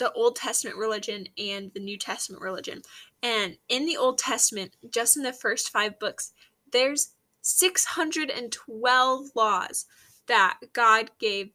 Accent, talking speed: American, 135 wpm